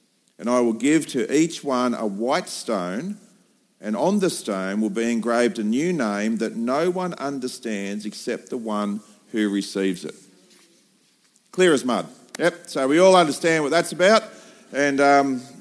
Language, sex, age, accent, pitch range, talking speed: English, male, 50-69, Australian, 125-190 Hz, 165 wpm